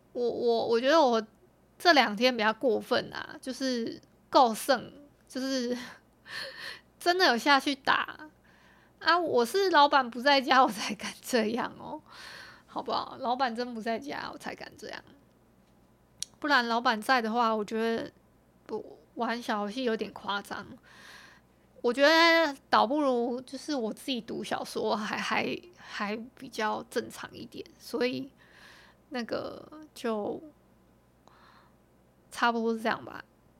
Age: 20-39